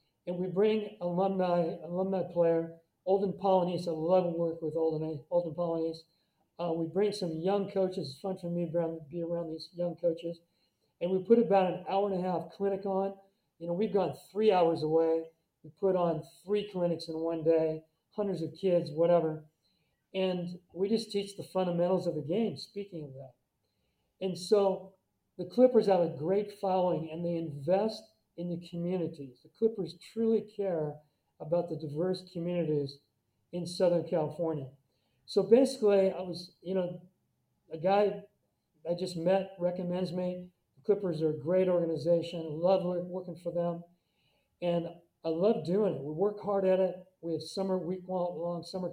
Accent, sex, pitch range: American, male, 165-190 Hz